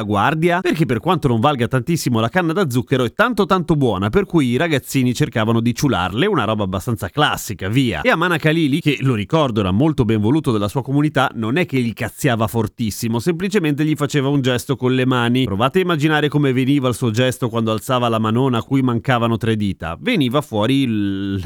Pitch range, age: 115-170 Hz, 30-49